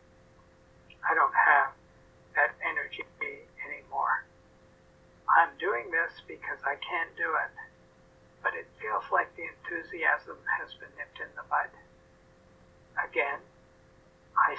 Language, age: English, 50-69